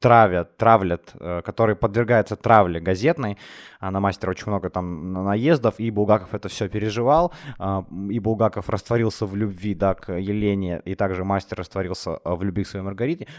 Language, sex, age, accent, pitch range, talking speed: Ukrainian, male, 20-39, native, 100-140 Hz, 150 wpm